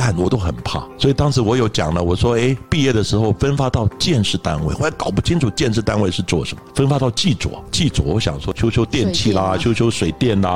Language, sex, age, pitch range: Chinese, male, 60-79, 95-135 Hz